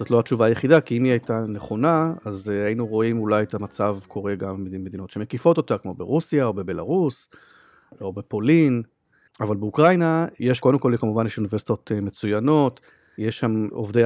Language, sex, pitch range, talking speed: Hebrew, male, 105-145 Hz, 160 wpm